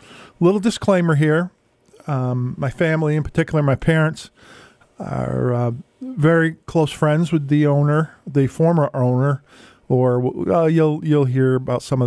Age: 40-59